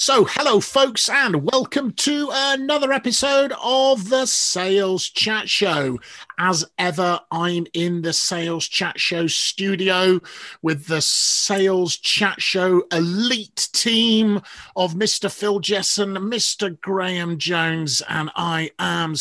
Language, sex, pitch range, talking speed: English, male, 150-205 Hz, 120 wpm